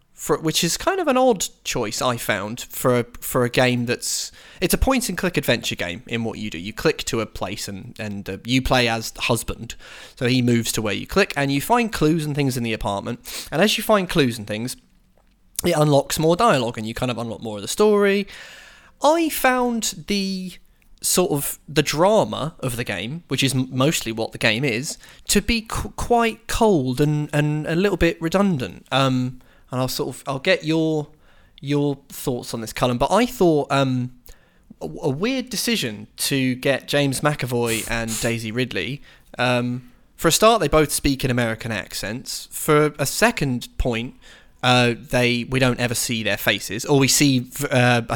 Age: 20-39